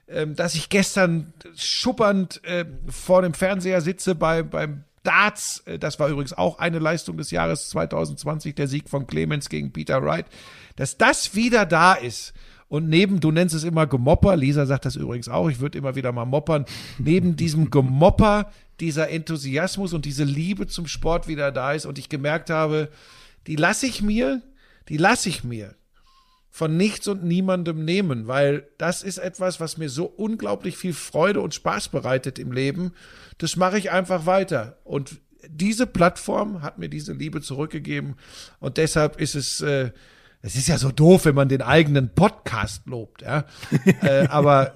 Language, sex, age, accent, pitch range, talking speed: German, male, 50-69, German, 145-190 Hz, 170 wpm